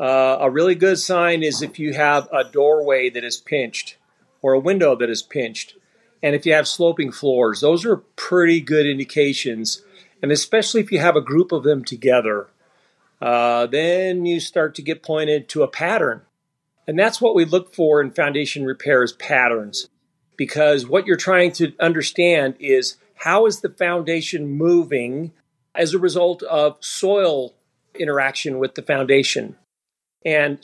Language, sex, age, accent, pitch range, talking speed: English, male, 50-69, American, 145-180 Hz, 165 wpm